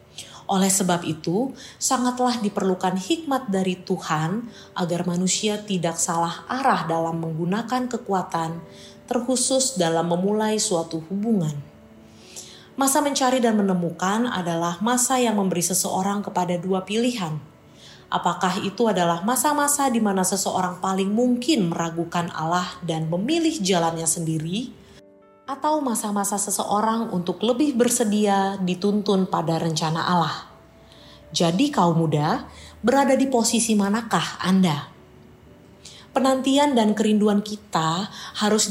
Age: 30-49